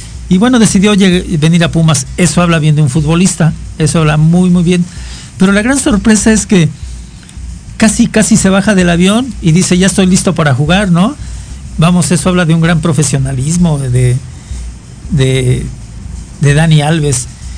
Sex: male